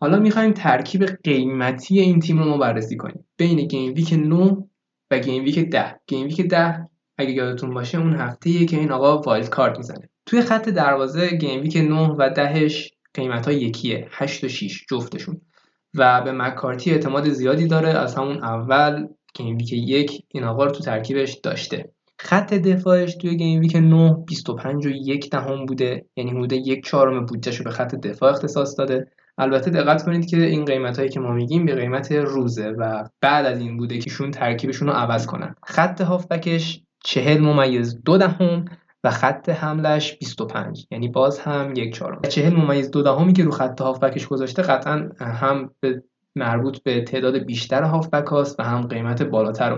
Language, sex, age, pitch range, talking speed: Persian, male, 20-39, 130-165 Hz, 165 wpm